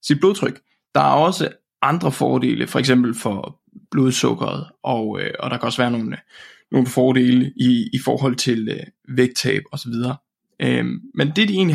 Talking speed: 170 wpm